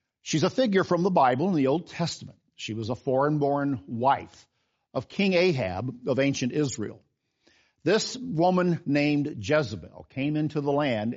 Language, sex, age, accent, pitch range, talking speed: English, male, 50-69, American, 120-160 Hz, 155 wpm